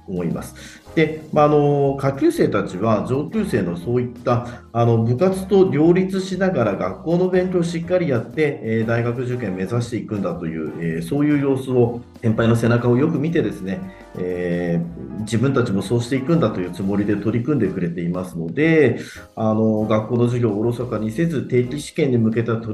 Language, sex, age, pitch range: Japanese, male, 40-59, 105-155 Hz